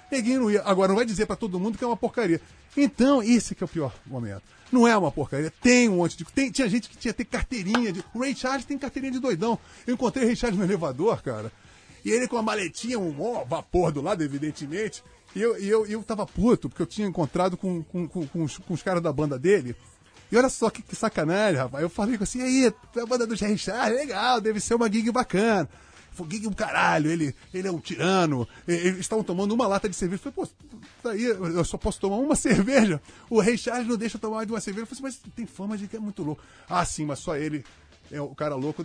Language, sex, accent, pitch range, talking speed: Portuguese, male, Brazilian, 165-235 Hz, 235 wpm